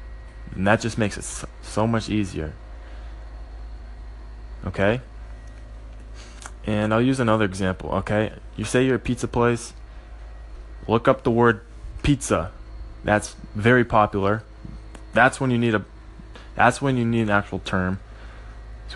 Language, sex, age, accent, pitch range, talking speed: English, male, 20-39, American, 90-110 Hz, 135 wpm